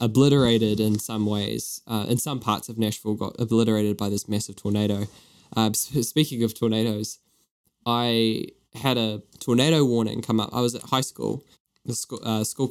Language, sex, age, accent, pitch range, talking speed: English, male, 10-29, Australian, 110-125 Hz, 165 wpm